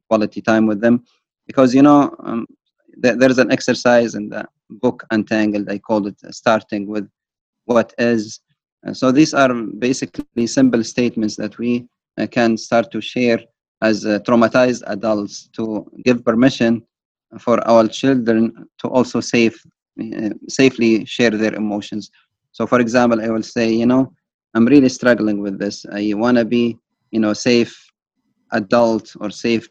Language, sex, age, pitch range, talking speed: English, male, 30-49, 110-125 Hz, 155 wpm